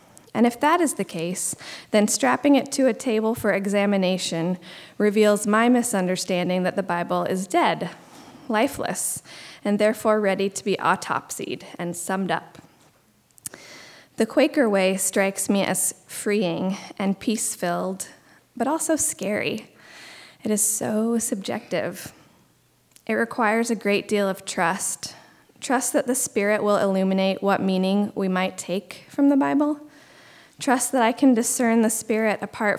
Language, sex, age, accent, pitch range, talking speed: English, female, 20-39, American, 195-250 Hz, 140 wpm